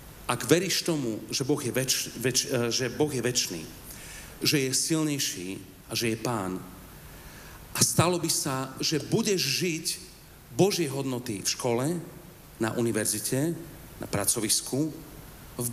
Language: Slovak